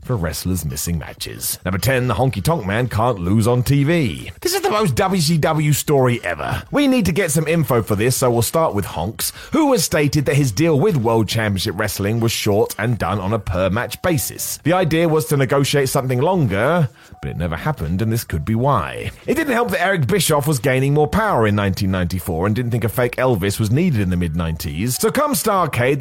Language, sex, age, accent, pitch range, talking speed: English, male, 30-49, British, 110-170 Hz, 215 wpm